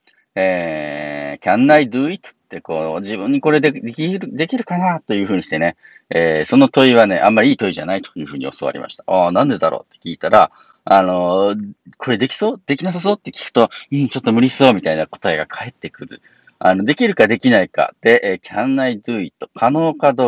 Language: Japanese